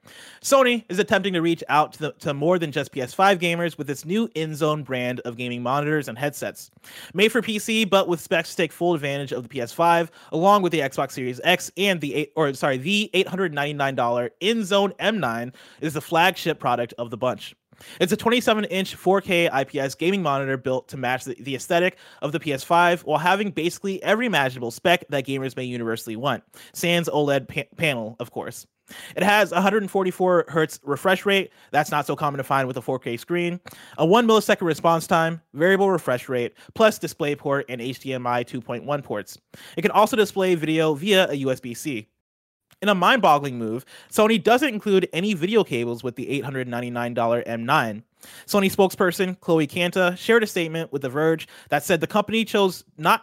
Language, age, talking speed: English, 30-49, 170 wpm